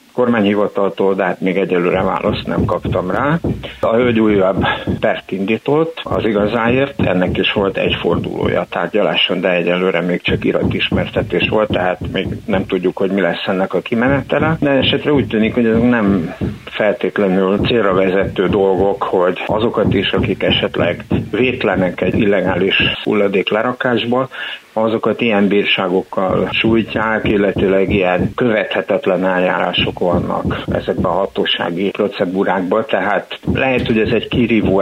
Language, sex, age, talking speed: Hungarian, male, 60-79, 135 wpm